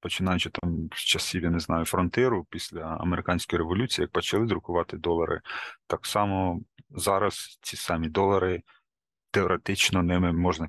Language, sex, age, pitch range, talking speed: Ukrainian, male, 30-49, 85-95 Hz, 130 wpm